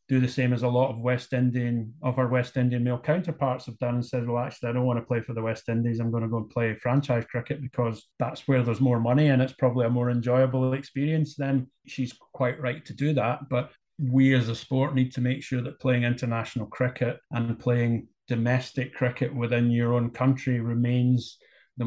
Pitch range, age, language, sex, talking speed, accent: 120-135 Hz, 30-49, English, male, 220 wpm, British